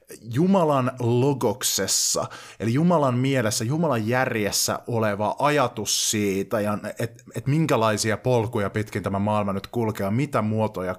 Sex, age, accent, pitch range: male, 30-49, native, 100-130 Hz